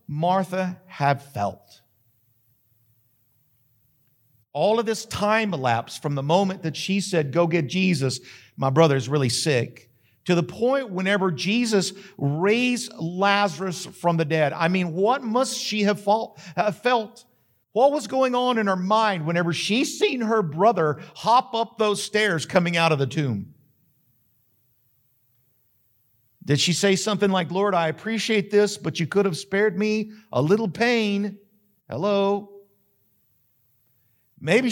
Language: English